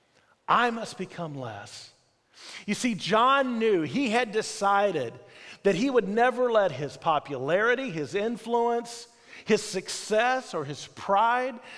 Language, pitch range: English, 165-235 Hz